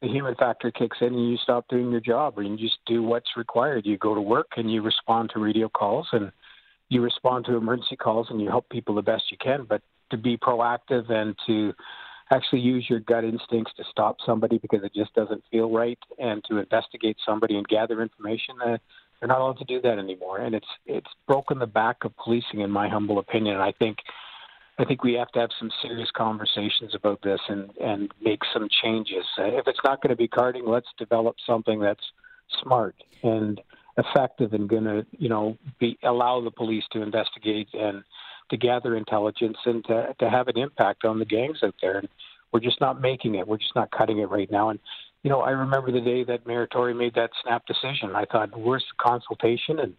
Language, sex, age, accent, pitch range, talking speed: English, male, 50-69, American, 110-125 Hz, 215 wpm